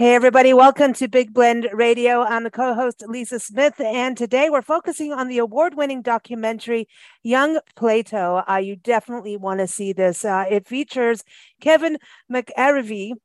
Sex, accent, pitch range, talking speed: female, American, 200-255 Hz, 155 wpm